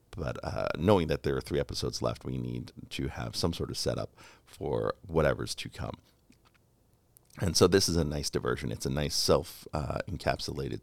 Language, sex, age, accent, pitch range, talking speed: English, male, 40-59, American, 70-100 Hz, 175 wpm